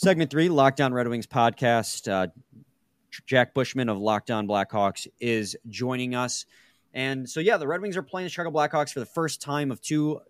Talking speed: 185 wpm